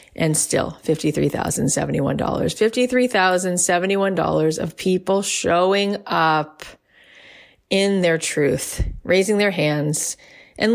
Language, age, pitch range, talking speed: English, 30-49, 160-200 Hz, 85 wpm